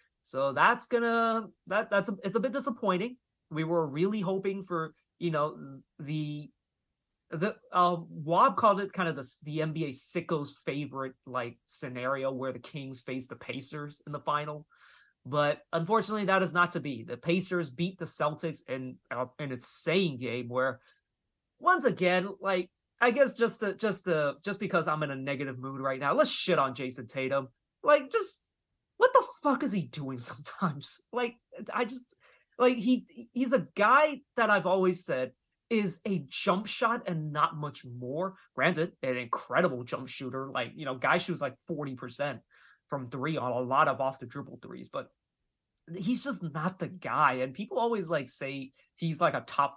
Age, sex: 30-49, male